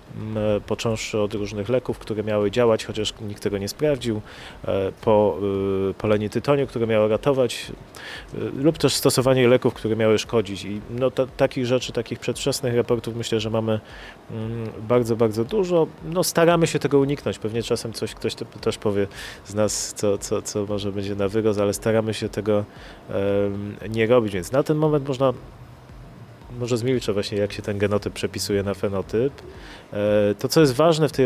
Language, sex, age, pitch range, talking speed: Polish, male, 30-49, 105-130 Hz, 175 wpm